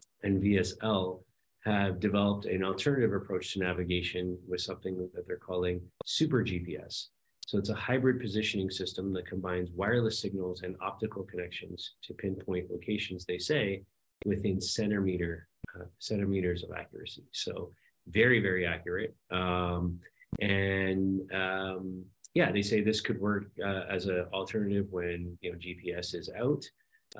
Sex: male